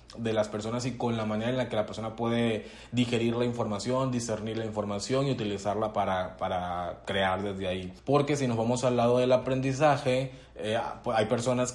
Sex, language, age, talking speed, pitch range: male, Spanish, 30-49, 190 wpm, 115-130 Hz